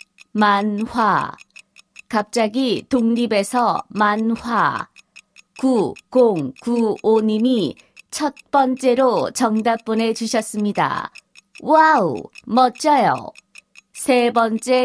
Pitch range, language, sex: 220-260 Hz, Korean, female